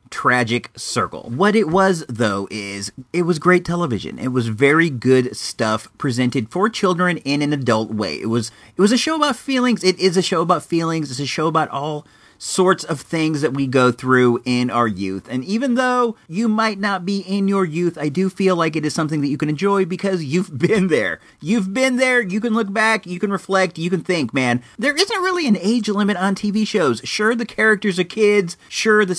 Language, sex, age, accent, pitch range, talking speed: English, male, 40-59, American, 130-195 Hz, 220 wpm